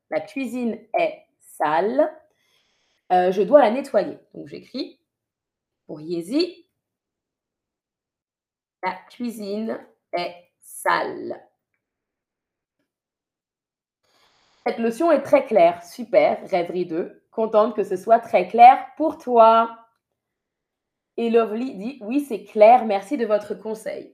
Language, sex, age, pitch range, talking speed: French, female, 20-39, 205-290 Hz, 105 wpm